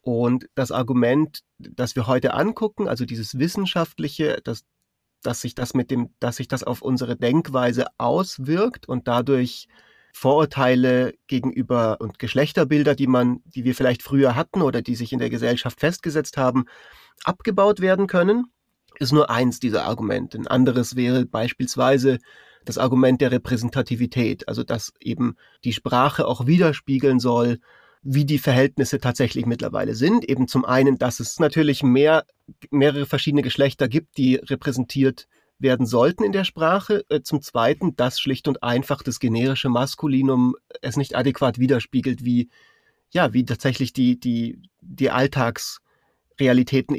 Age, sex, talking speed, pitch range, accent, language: 30-49, male, 140 wpm, 125-150 Hz, German, German